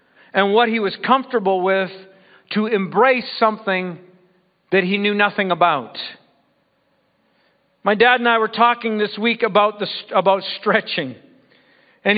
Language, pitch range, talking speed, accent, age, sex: English, 185-240 Hz, 140 wpm, American, 50-69, male